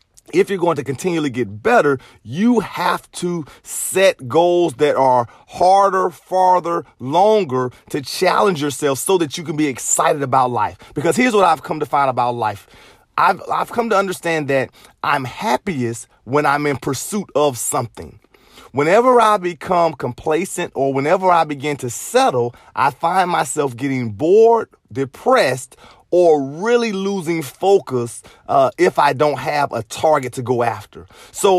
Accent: American